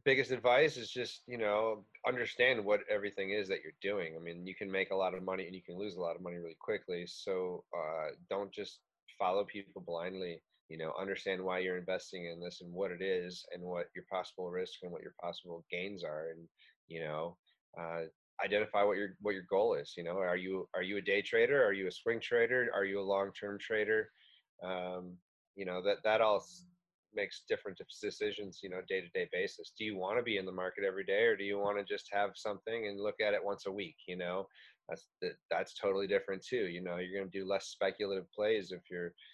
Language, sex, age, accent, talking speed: English, male, 30-49, American, 230 wpm